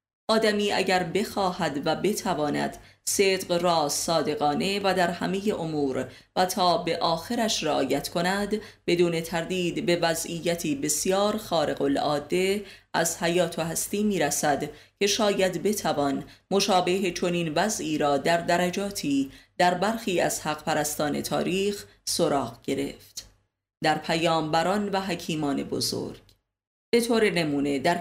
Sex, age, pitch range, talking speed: female, 30-49, 150-195 Hz, 120 wpm